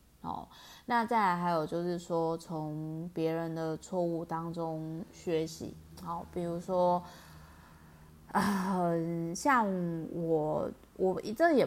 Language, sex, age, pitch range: Chinese, female, 20-39, 160-195 Hz